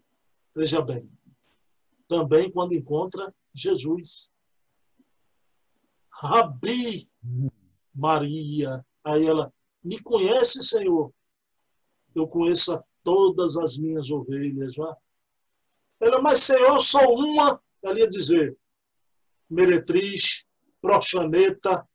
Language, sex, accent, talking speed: Portuguese, male, Brazilian, 80 wpm